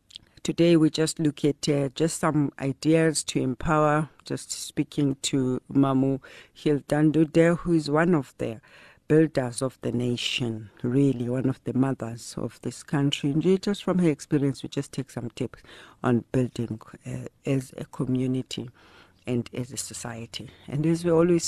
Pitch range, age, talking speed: 125-165 Hz, 60-79, 160 wpm